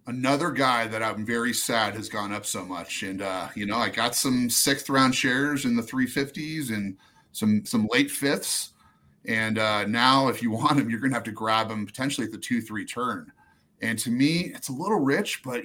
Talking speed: 215 wpm